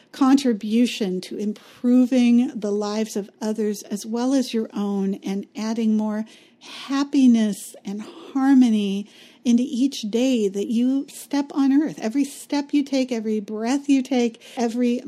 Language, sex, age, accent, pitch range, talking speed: English, female, 50-69, American, 200-245 Hz, 140 wpm